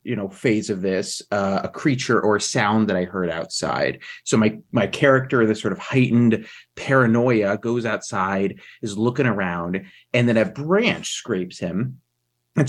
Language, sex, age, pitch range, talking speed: English, male, 30-49, 100-125 Hz, 170 wpm